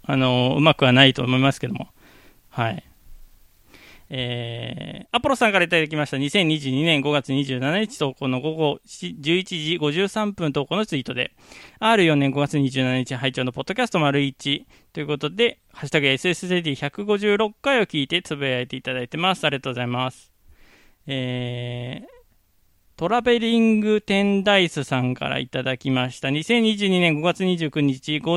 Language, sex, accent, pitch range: Japanese, male, native, 130-175 Hz